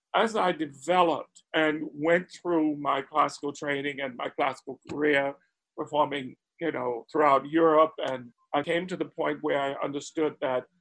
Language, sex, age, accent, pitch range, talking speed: English, male, 50-69, American, 140-160 Hz, 155 wpm